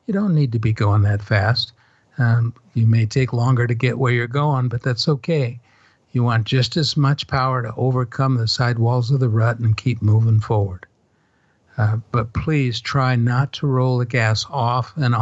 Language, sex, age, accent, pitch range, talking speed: English, male, 60-79, American, 110-130 Hz, 195 wpm